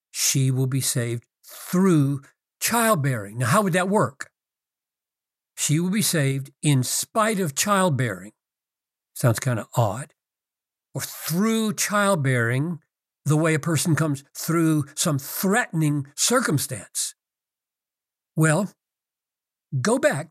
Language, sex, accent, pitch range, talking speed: English, male, American, 135-180 Hz, 110 wpm